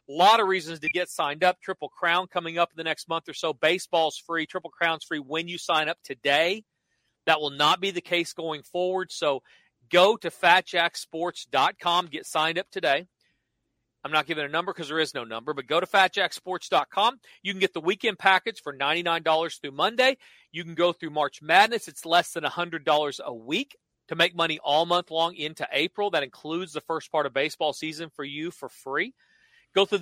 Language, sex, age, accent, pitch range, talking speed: English, male, 40-59, American, 155-185 Hz, 205 wpm